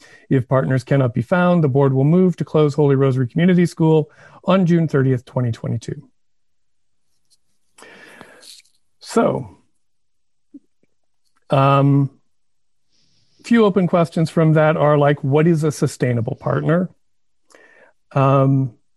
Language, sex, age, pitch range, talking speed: English, male, 40-59, 130-165 Hz, 110 wpm